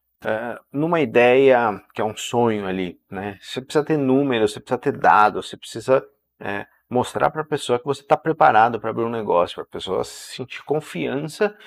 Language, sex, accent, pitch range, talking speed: Portuguese, male, Brazilian, 105-145 Hz, 190 wpm